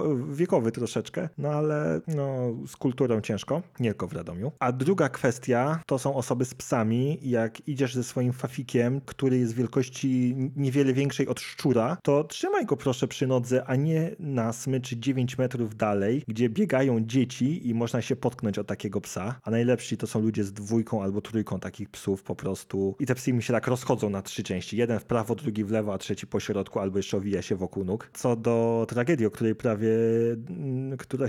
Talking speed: 195 wpm